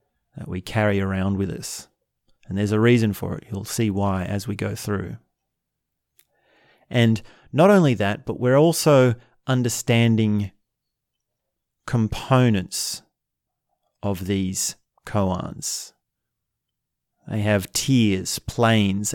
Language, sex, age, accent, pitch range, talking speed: English, male, 30-49, Australian, 105-130 Hz, 110 wpm